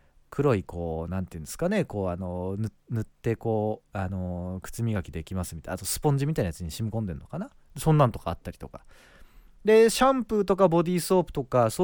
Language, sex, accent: Japanese, male, native